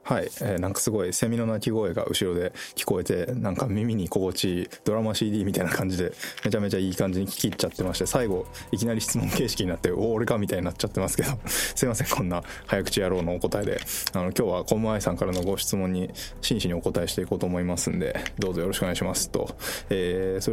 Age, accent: 20-39, native